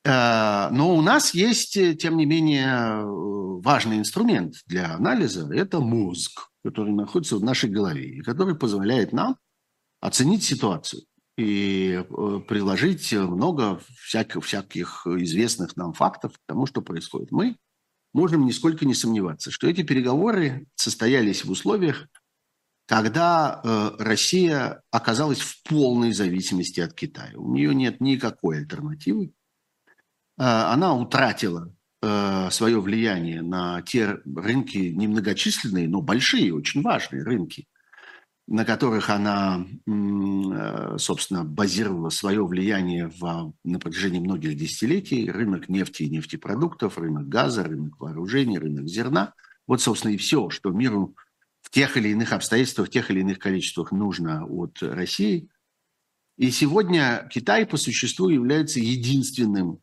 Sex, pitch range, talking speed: male, 95-145 Hz, 120 wpm